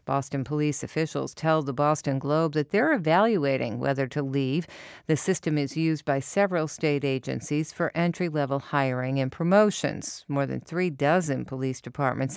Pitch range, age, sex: 140-170 Hz, 50-69, female